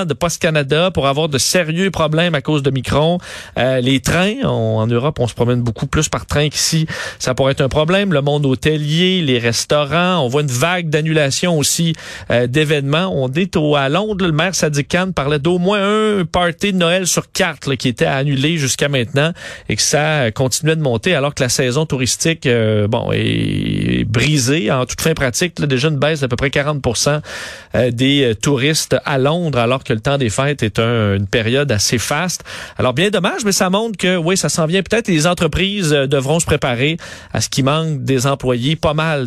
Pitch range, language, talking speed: 130-165 Hz, French, 205 wpm